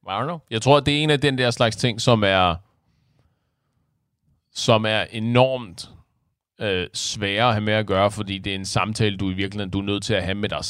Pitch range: 90-115 Hz